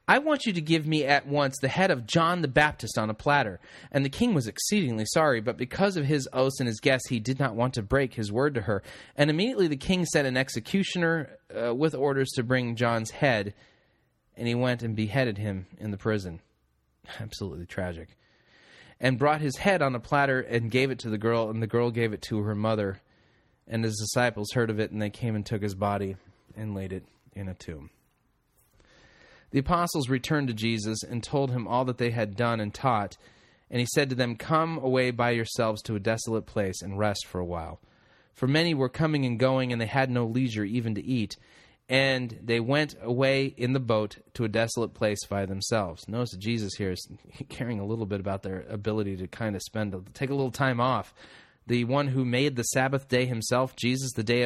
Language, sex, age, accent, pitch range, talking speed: English, male, 30-49, American, 110-135 Hz, 220 wpm